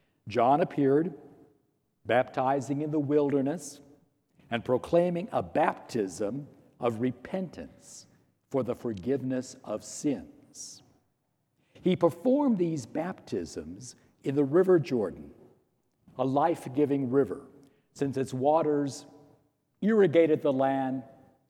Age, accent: 60-79, American